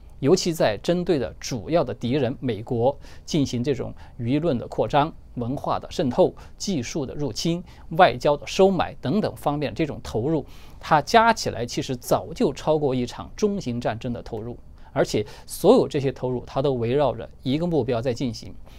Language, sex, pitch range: Chinese, male, 110-160 Hz